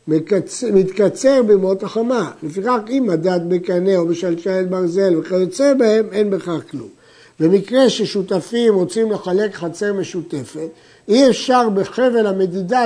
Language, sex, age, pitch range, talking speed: Hebrew, male, 60-79, 175-220 Hz, 115 wpm